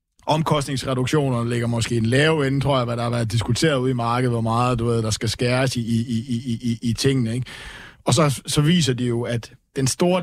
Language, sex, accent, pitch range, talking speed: Danish, male, native, 115-140 Hz, 225 wpm